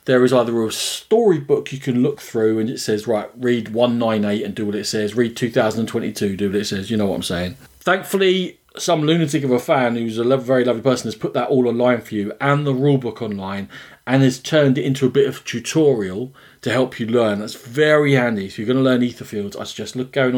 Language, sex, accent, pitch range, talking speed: English, male, British, 110-140 Hz, 240 wpm